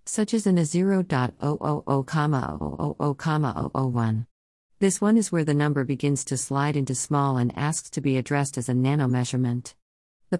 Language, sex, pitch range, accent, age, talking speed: English, female, 130-155 Hz, American, 50-69, 175 wpm